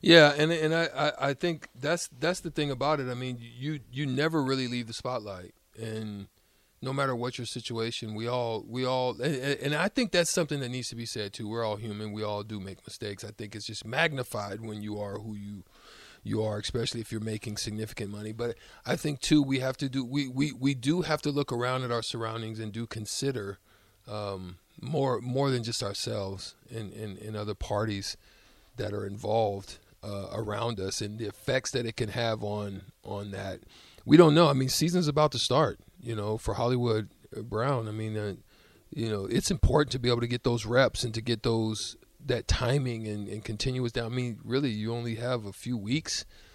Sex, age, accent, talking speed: male, 40-59, American, 215 wpm